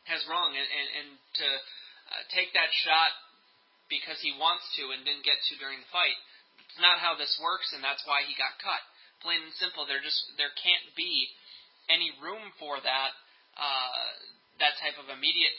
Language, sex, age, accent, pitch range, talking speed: English, male, 20-39, American, 135-160 Hz, 190 wpm